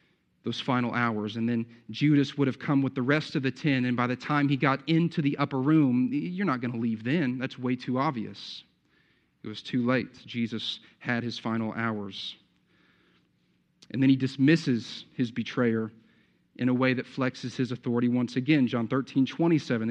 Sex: male